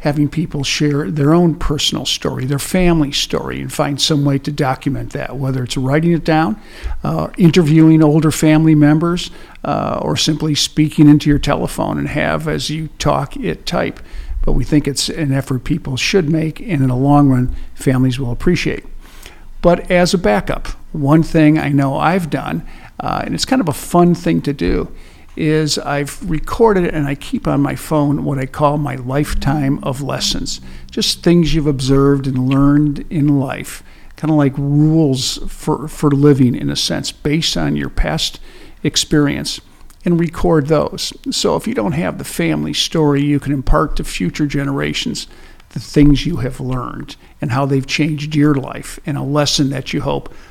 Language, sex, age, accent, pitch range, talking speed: English, male, 50-69, American, 135-155 Hz, 180 wpm